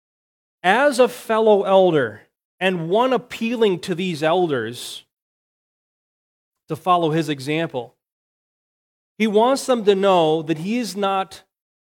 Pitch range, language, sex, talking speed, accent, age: 135-190 Hz, English, male, 115 wpm, American, 30-49